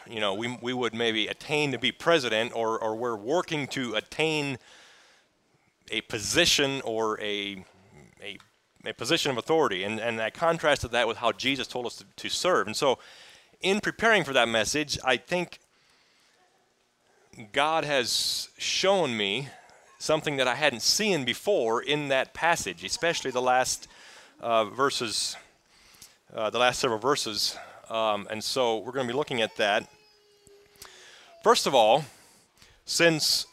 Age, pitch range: 30-49, 115-160 Hz